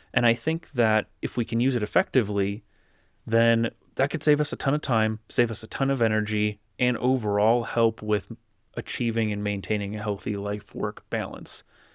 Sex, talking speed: male, 180 wpm